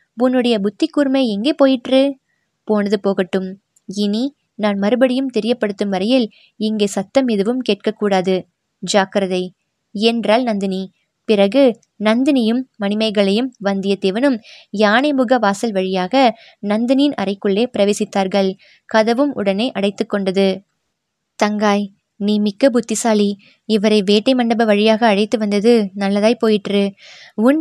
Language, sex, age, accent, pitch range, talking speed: Tamil, female, 20-39, native, 205-245 Hz, 100 wpm